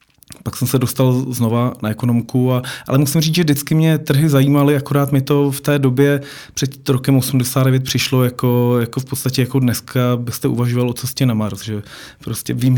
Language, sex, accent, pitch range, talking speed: Czech, male, native, 115-130 Hz, 170 wpm